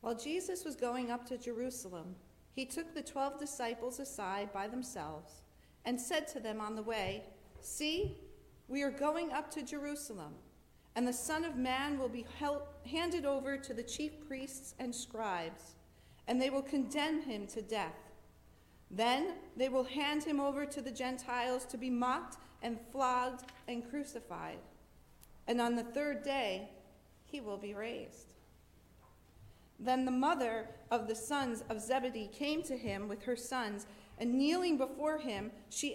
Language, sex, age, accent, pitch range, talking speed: English, female, 40-59, American, 230-290 Hz, 160 wpm